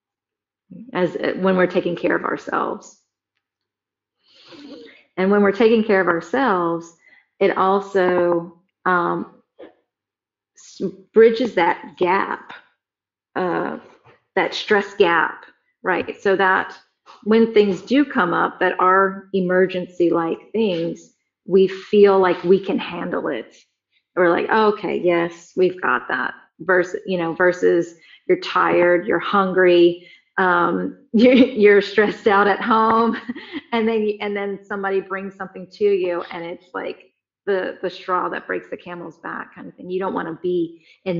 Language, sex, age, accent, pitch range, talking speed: English, female, 40-59, American, 170-210 Hz, 145 wpm